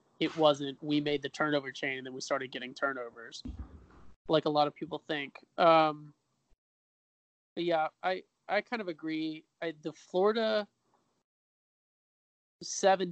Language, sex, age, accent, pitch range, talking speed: English, male, 20-39, American, 145-160 Hz, 135 wpm